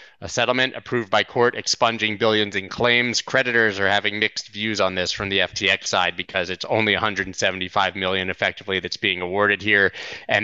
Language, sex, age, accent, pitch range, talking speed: English, male, 30-49, American, 100-120 Hz, 180 wpm